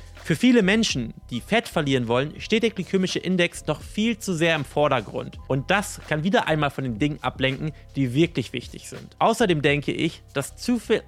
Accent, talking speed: German, 195 wpm